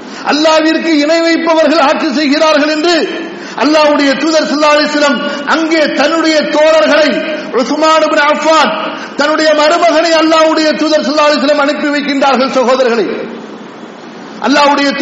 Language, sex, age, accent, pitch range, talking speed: English, male, 50-69, Indian, 290-315 Hz, 90 wpm